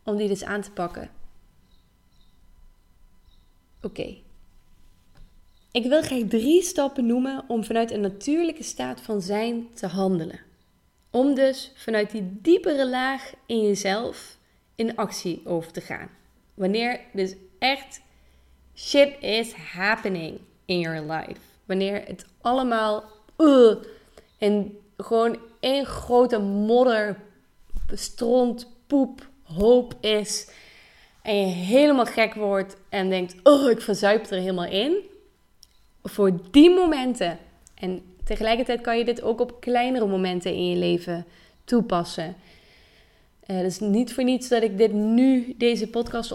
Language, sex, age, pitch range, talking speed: Dutch, female, 20-39, 185-235 Hz, 130 wpm